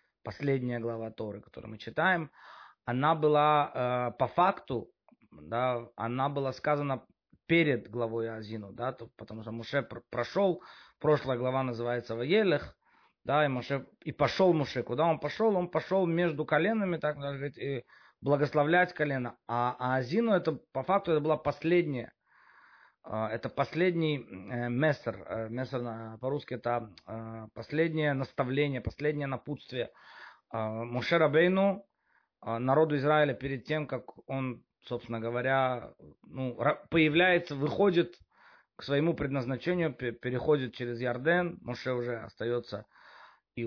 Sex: male